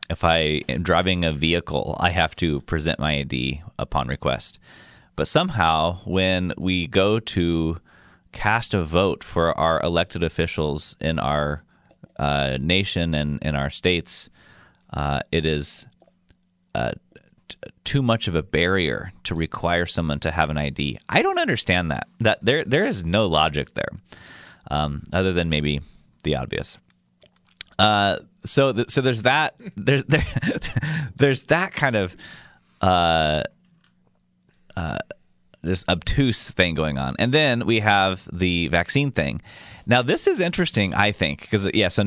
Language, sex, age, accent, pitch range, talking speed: English, male, 30-49, American, 75-105 Hz, 150 wpm